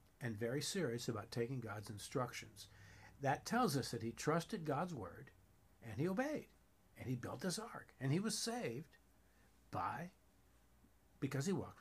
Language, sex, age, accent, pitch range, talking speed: English, male, 60-79, American, 115-155 Hz, 160 wpm